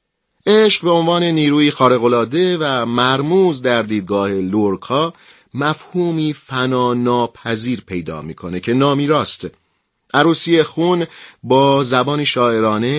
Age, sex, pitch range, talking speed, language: 40-59, male, 115-150 Hz, 105 wpm, Persian